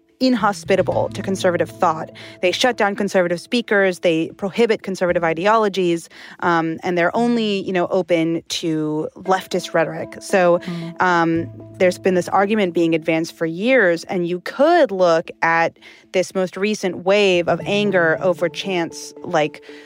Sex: female